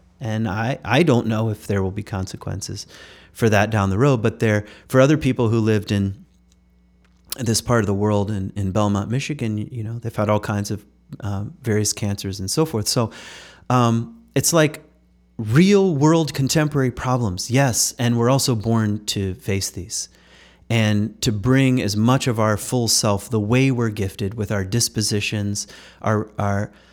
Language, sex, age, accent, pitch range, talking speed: English, male, 30-49, American, 100-125 Hz, 175 wpm